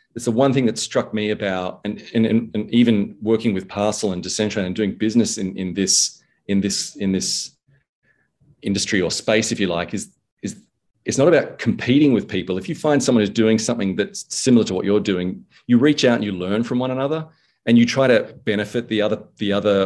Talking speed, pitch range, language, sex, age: 220 wpm, 100-120 Hz, English, male, 40-59